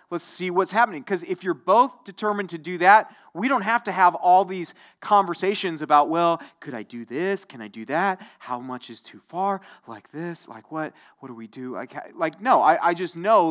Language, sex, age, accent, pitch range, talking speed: English, male, 30-49, American, 115-170 Hz, 220 wpm